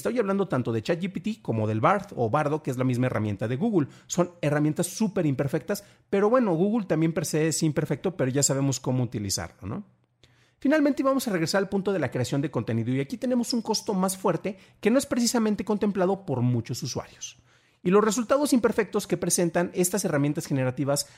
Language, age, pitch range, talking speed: Spanish, 40-59, 130-195 Hz, 190 wpm